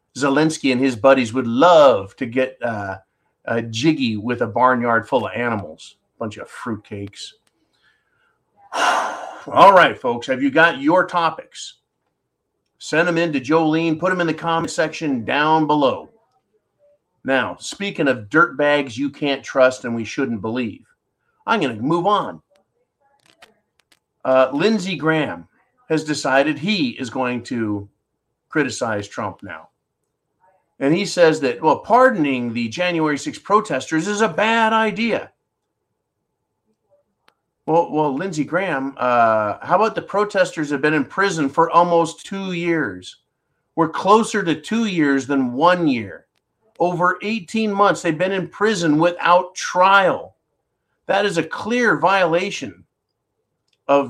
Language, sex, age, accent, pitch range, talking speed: English, male, 40-59, American, 135-195 Hz, 140 wpm